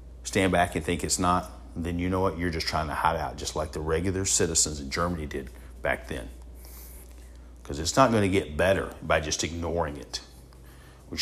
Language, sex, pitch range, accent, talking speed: English, male, 65-100 Hz, American, 205 wpm